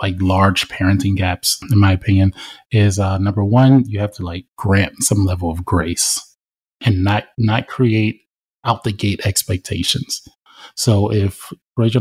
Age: 20-39